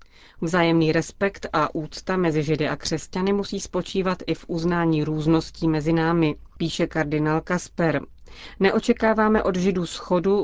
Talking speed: 130 wpm